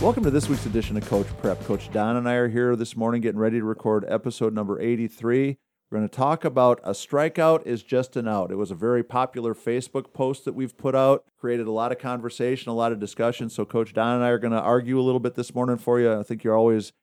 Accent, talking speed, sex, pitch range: American, 260 wpm, male, 105-125 Hz